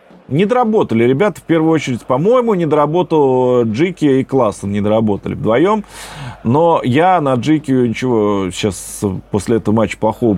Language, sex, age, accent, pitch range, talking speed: Russian, male, 30-49, native, 110-145 Hz, 145 wpm